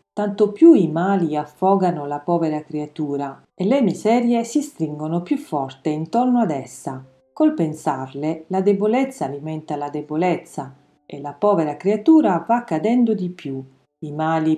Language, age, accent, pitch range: Italian, 40-59, native, 150-220 Hz